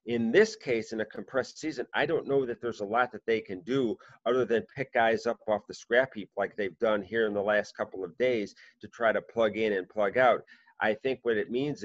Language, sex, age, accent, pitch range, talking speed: English, male, 40-59, American, 105-125 Hz, 255 wpm